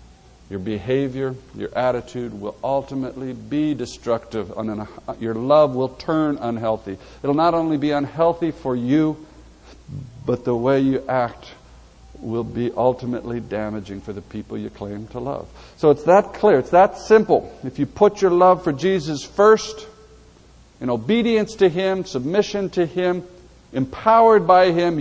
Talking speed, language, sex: 150 wpm, English, male